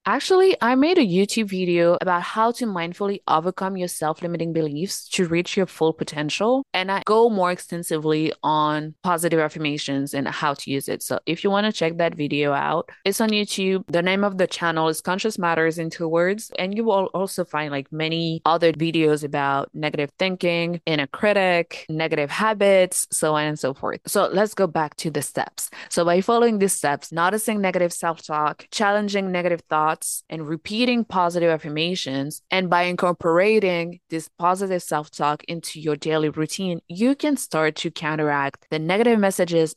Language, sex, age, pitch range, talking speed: English, female, 20-39, 160-195 Hz, 175 wpm